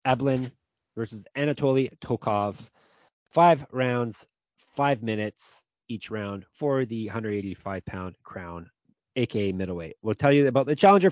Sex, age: male, 30-49